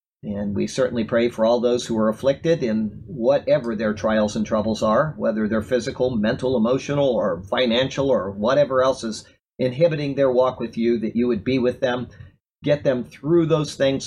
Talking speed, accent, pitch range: 190 wpm, American, 110-135 Hz